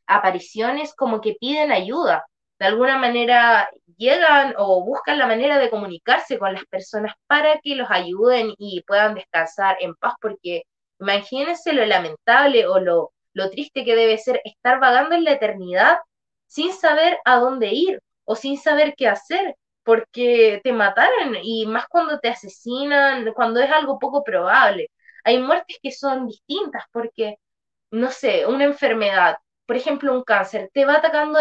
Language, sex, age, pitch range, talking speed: Spanish, female, 20-39, 210-285 Hz, 160 wpm